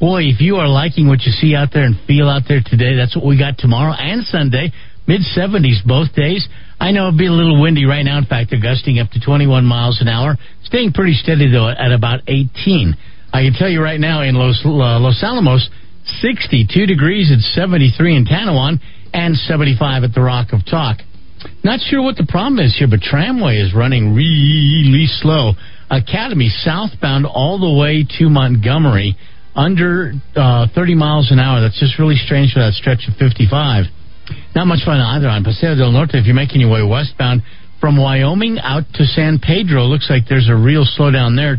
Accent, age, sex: American, 50-69, male